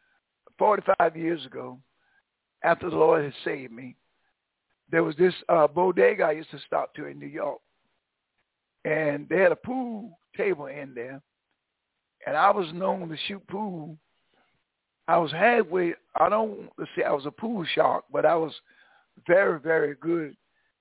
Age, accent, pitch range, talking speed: 60-79, American, 155-215 Hz, 160 wpm